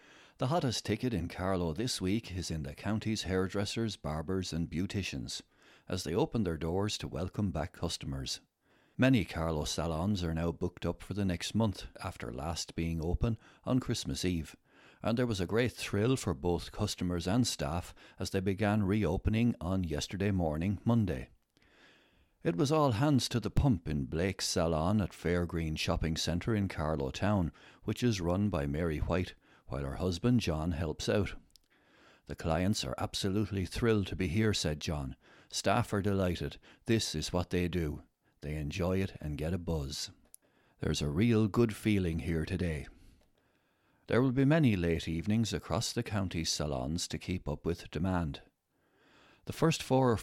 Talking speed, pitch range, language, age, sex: 170 wpm, 80-110 Hz, English, 60-79, male